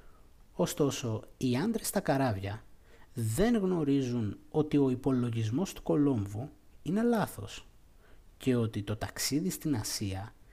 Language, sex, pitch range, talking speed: Greek, male, 105-150 Hz, 115 wpm